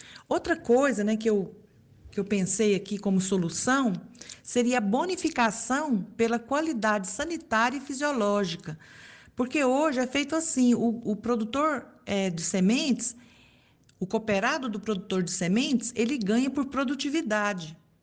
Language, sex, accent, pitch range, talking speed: Portuguese, female, Brazilian, 200-265 Hz, 125 wpm